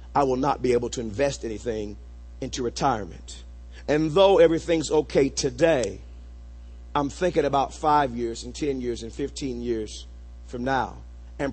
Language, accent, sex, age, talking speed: English, American, male, 40-59, 150 wpm